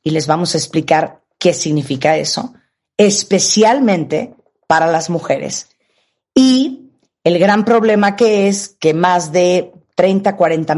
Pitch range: 160-200 Hz